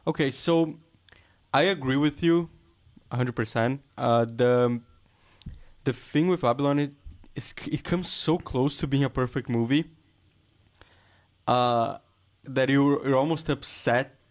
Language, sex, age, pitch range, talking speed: English, male, 20-39, 115-140 Hz, 130 wpm